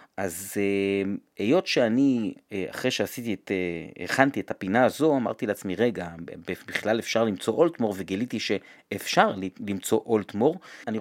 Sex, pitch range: male, 100-155 Hz